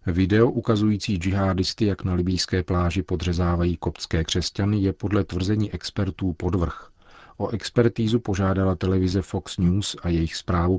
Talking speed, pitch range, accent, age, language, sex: 135 wpm, 85-95 Hz, native, 40-59, Czech, male